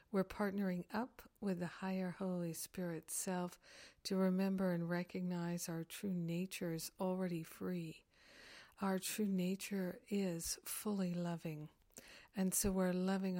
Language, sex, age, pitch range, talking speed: English, female, 60-79, 170-195 Hz, 130 wpm